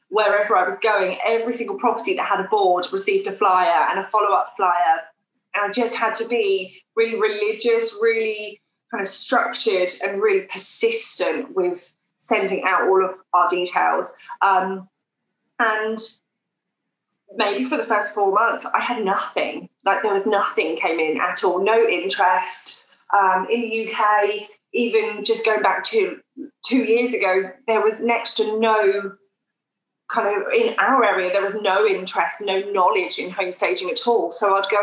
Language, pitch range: English, 195-255 Hz